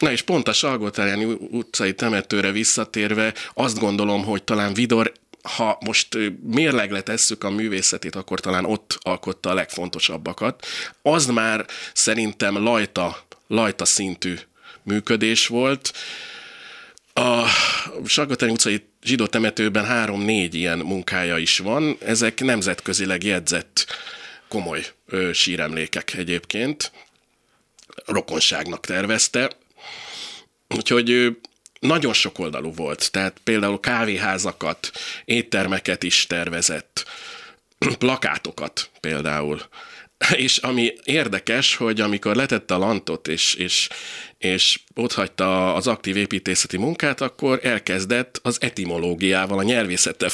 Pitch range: 95-120 Hz